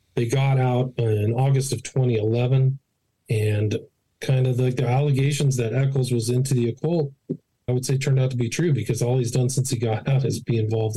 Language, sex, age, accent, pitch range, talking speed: English, male, 40-59, American, 110-135 Hz, 210 wpm